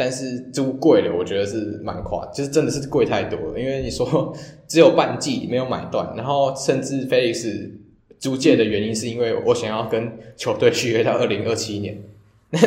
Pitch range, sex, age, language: 110-160 Hz, male, 20-39, Chinese